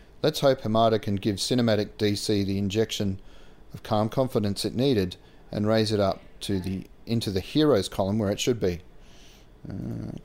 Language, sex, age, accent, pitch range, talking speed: English, male, 30-49, Australian, 90-110 Hz, 170 wpm